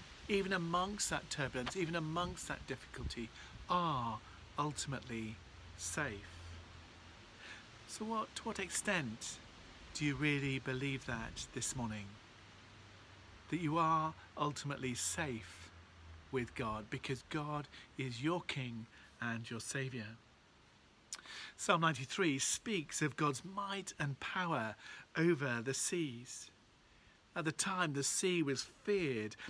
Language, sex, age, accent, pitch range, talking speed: English, male, 40-59, British, 110-160 Hz, 110 wpm